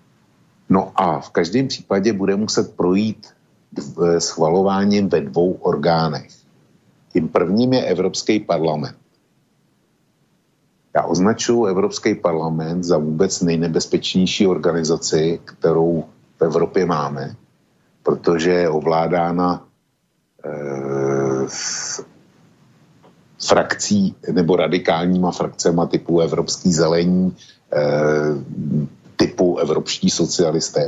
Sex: male